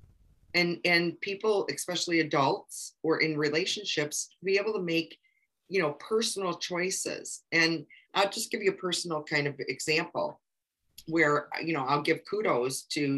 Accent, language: American, English